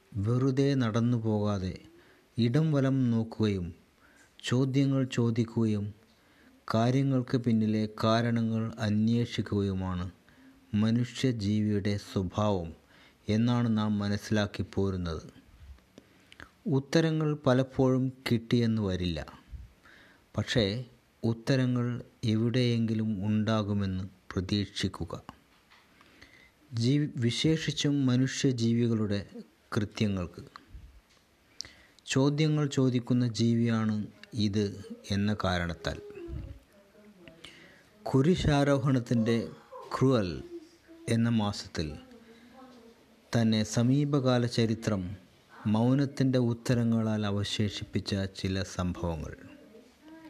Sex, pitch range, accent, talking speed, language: male, 105-135 Hz, native, 55 wpm, Malayalam